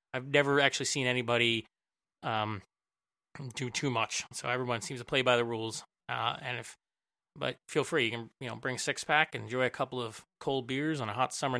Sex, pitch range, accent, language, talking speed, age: male, 115-135 Hz, American, English, 215 wpm, 30-49